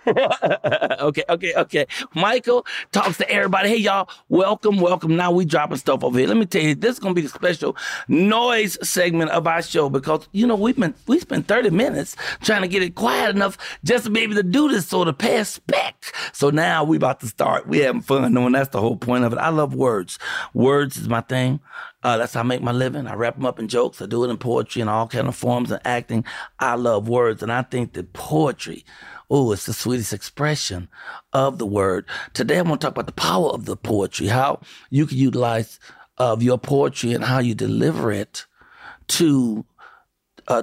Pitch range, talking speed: 120-175 Hz, 220 wpm